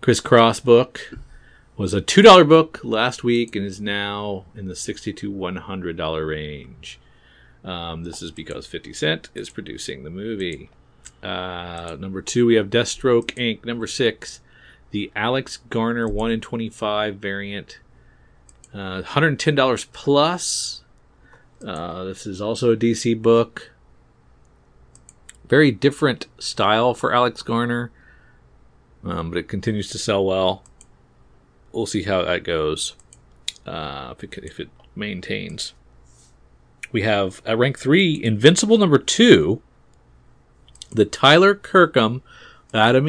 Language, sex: English, male